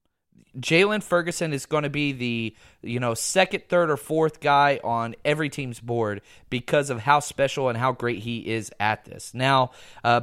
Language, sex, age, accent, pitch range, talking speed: English, male, 30-49, American, 130-170 Hz, 180 wpm